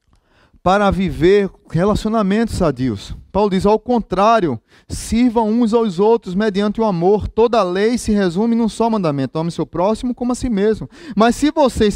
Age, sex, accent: 20-39, male, Brazilian